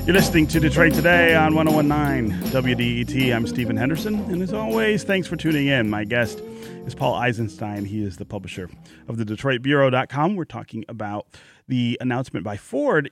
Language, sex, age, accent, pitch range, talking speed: English, male, 30-49, American, 105-145 Hz, 165 wpm